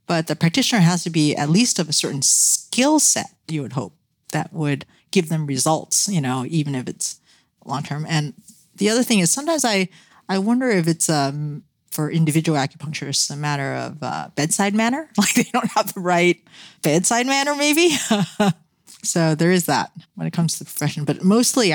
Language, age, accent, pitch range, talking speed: English, 40-59, American, 145-190 Hz, 195 wpm